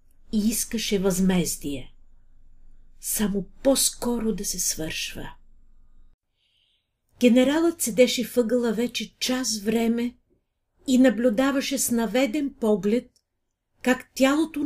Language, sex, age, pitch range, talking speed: Bulgarian, female, 40-59, 200-260 Hz, 85 wpm